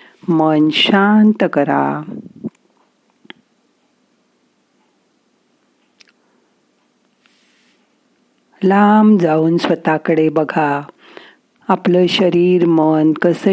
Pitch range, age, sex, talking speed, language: 155-205 Hz, 50-69, female, 50 wpm, Marathi